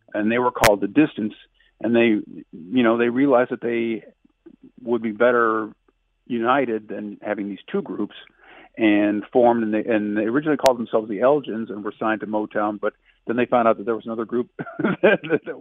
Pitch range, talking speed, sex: 110-130 Hz, 190 wpm, male